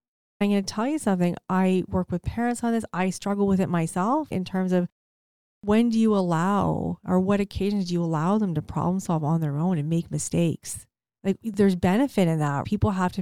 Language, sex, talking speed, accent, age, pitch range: English, female, 220 wpm, American, 30-49, 175-210 Hz